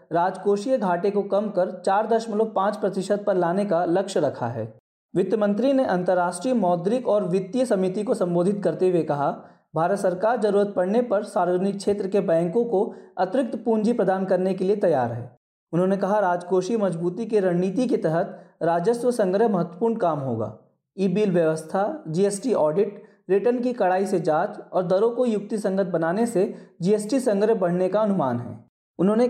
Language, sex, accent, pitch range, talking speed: Hindi, male, native, 175-210 Hz, 170 wpm